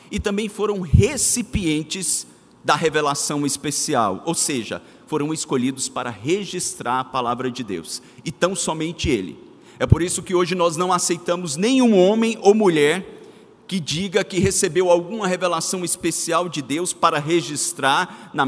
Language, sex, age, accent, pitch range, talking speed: Portuguese, male, 50-69, Brazilian, 140-200 Hz, 145 wpm